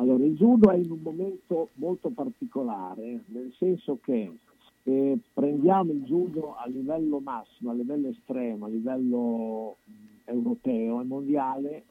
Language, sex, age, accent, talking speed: Italian, male, 50-69, native, 140 wpm